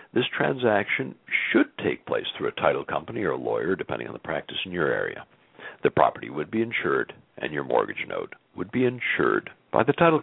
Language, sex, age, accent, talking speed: English, male, 60-79, American, 200 wpm